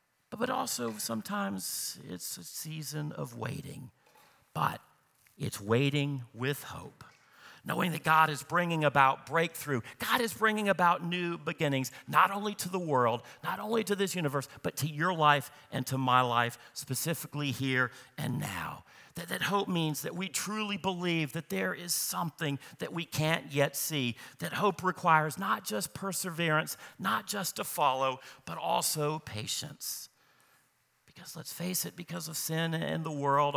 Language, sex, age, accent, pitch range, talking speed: English, male, 50-69, American, 125-155 Hz, 155 wpm